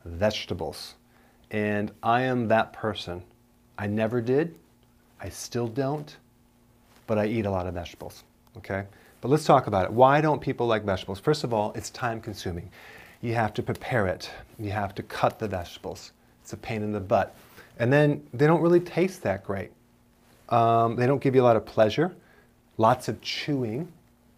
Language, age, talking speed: English, 40-59, 180 wpm